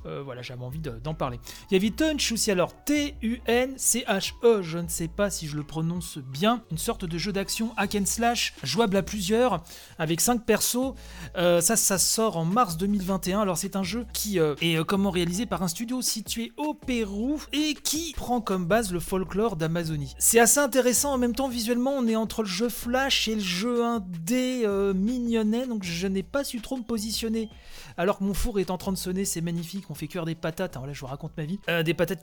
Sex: male